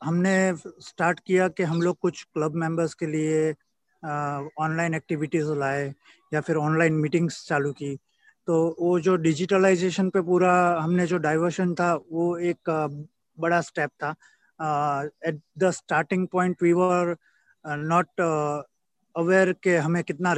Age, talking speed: 30-49, 140 wpm